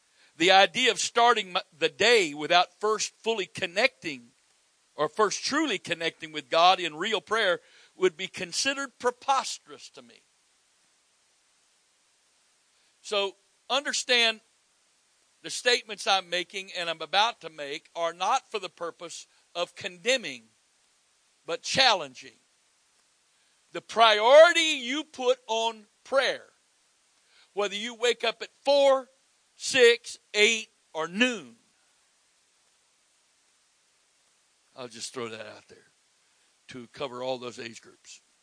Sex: male